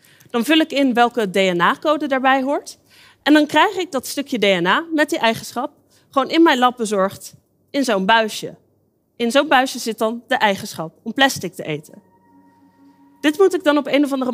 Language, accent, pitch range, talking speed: Dutch, Dutch, 195-290 Hz, 190 wpm